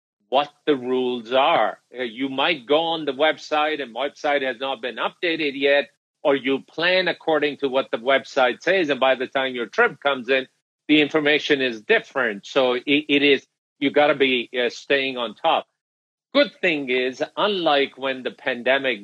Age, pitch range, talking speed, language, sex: 50-69, 125-155 Hz, 175 wpm, English, male